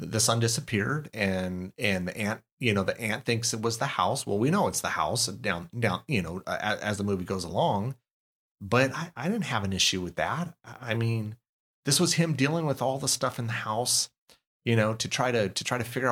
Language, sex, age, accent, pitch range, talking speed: English, male, 30-49, American, 100-125 Hz, 235 wpm